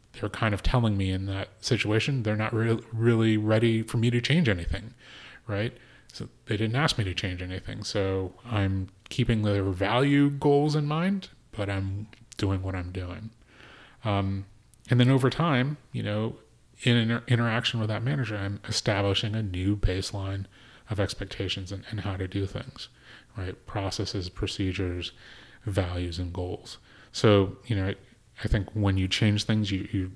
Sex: male